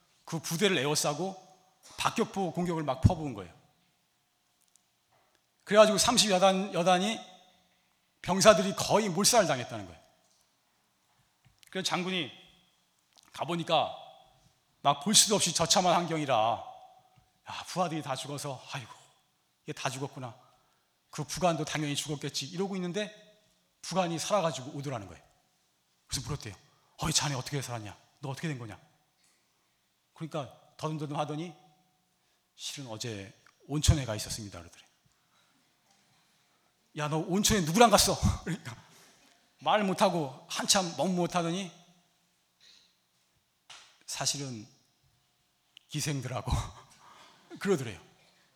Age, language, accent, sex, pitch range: 40-59, Korean, native, male, 135-185 Hz